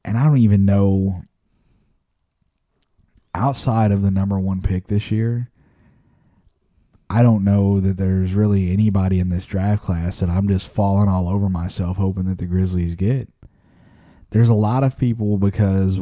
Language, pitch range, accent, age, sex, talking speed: English, 90-105 Hz, American, 30-49, male, 155 wpm